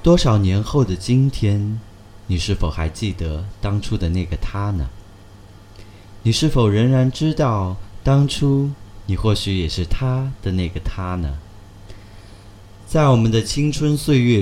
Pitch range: 95-115 Hz